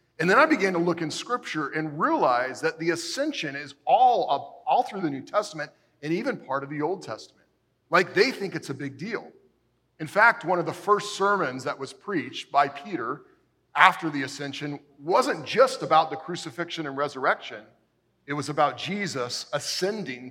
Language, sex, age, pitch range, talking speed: English, male, 40-59, 135-180 Hz, 185 wpm